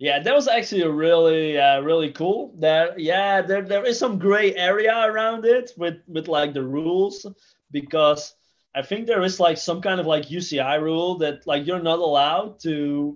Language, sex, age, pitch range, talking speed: English, male, 20-39, 145-185 Hz, 190 wpm